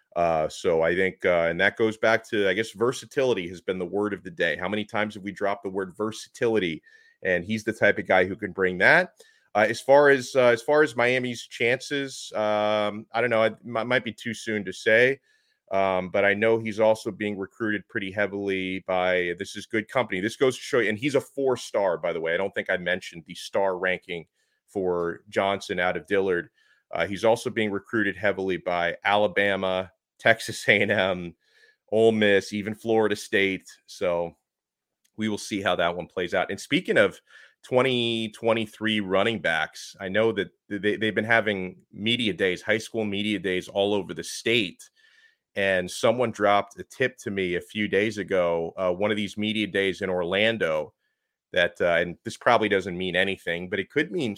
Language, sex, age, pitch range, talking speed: English, male, 30-49, 95-115 Hz, 200 wpm